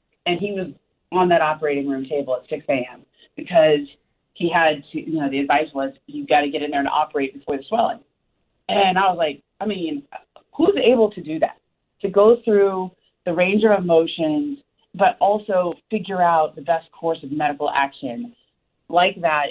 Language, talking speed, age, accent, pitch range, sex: English, 190 wpm, 30-49, American, 150-200 Hz, female